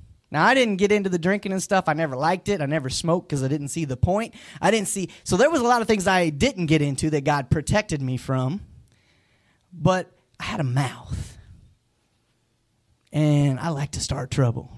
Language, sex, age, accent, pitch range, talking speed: English, male, 20-39, American, 120-180 Hz, 210 wpm